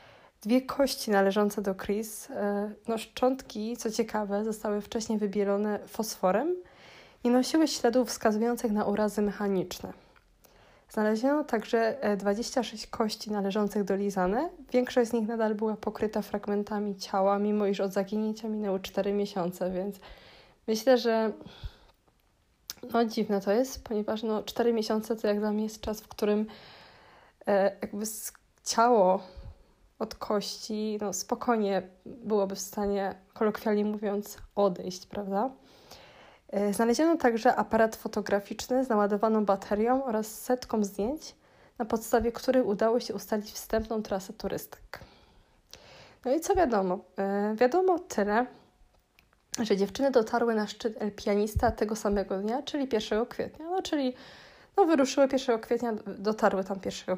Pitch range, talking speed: 205-235 Hz, 125 wpm